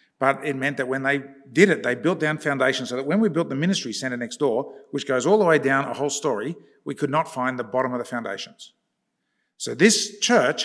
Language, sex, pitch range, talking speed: English, male, 140-210 Hz, 240 wpm